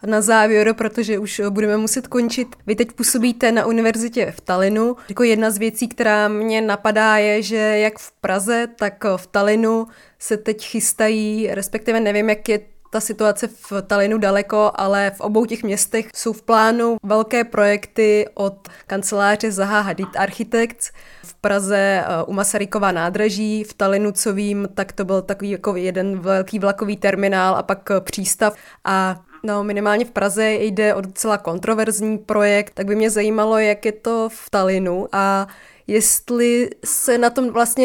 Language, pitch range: Czech, 200-225 Hz